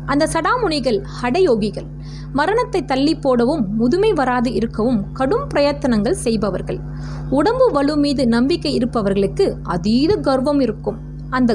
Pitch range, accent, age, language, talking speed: 205-310 Hz, native, 20-39, Tamil, 105 wpm